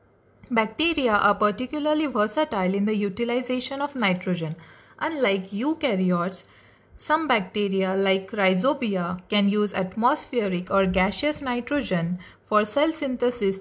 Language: English